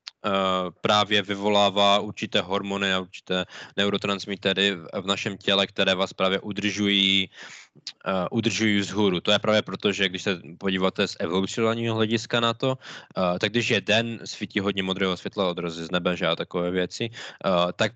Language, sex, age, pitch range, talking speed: Czech, male, 20-39, 90-105 Hz, 160 wpm